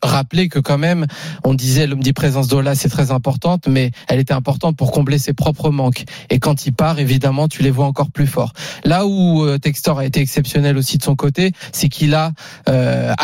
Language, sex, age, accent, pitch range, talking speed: French, male, 20-39, French, 135-160 Hz, 210 wpm